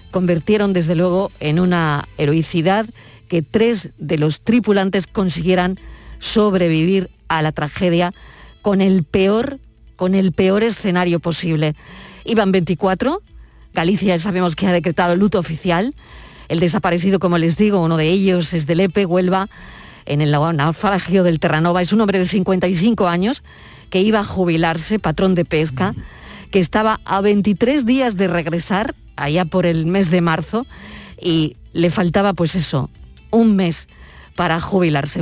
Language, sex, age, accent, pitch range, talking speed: Spanish, female, 40-59, Spanish, 165-195 Hz, 145 wpm